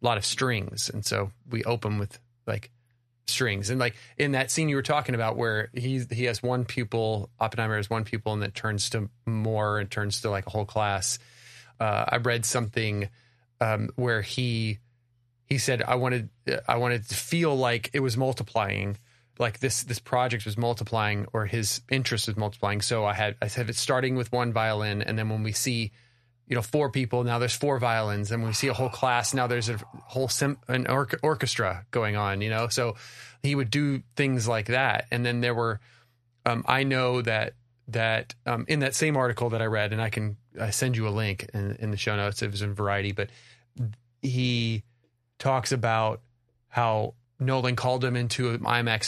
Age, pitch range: 30-49, 110-125 Hz